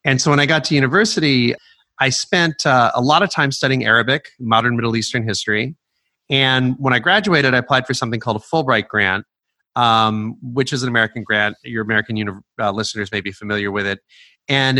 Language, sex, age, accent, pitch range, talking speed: English, male, 30-49, American, 105-135 Hz, 195 wpm